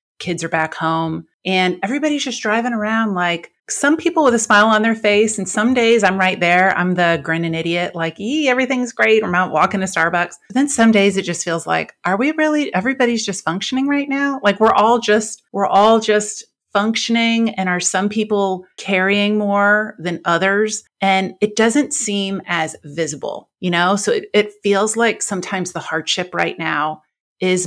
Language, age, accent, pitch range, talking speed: English, 30-49, American, 165-210 Hz, 190 wpm